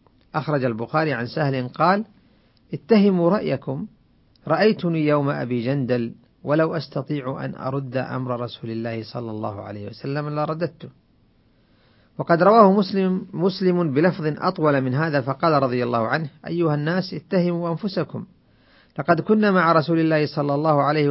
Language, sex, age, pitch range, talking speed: Arabic, male, 40-59, 120-165 Hz, 135 wpm